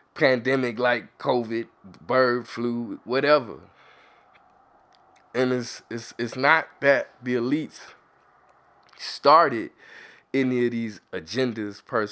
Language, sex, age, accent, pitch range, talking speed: English, male, 20-39, American, 120-140 Hz, 95 wpm